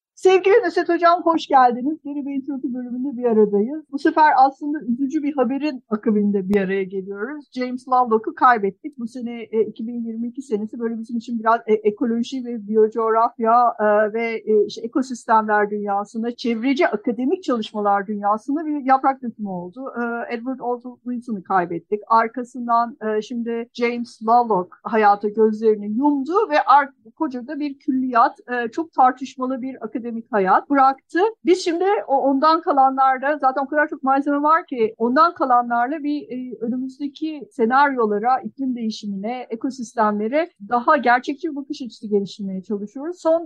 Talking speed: 135 wpm